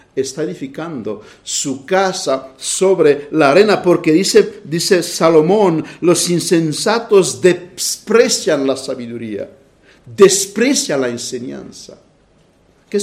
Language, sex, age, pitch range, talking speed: Spanish, male, 60-79, 135-195 Hz, 90 wpm